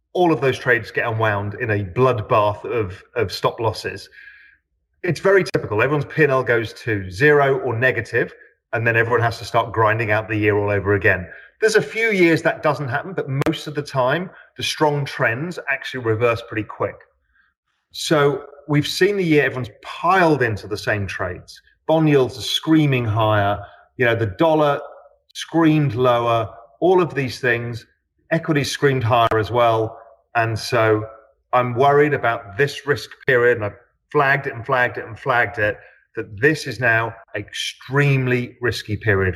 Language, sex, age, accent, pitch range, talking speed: English, male, 30-49, British, 110-140 Hz, 170 wpm